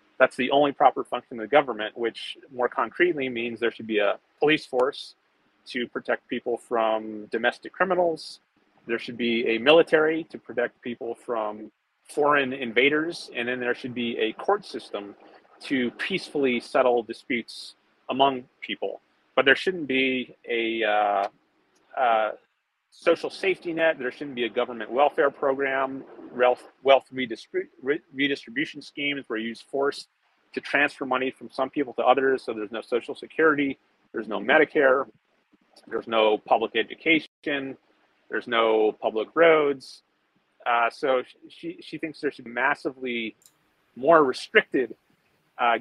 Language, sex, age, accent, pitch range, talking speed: English, male, 30-49, American, 120-150 Hz, 145 wpm